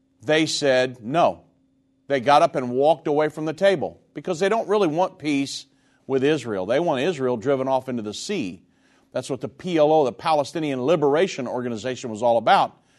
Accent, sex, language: American, male, English